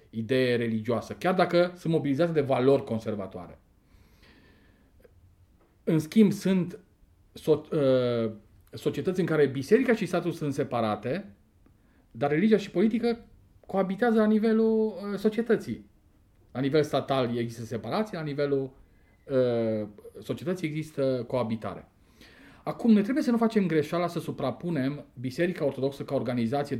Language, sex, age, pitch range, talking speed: Romanian, male, 40-59, 110-160 Hz, 115 wpm